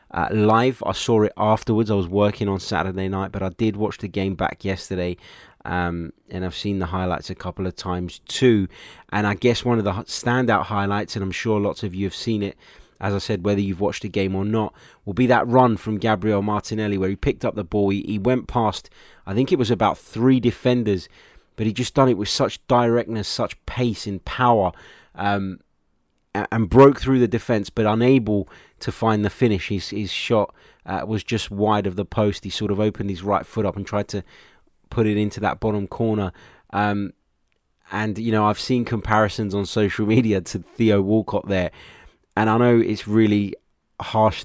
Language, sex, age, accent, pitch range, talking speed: English, male, 20-39, British, 95-110 Hz, 205 wpm